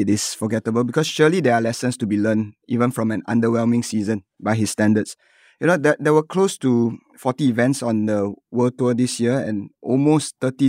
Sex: male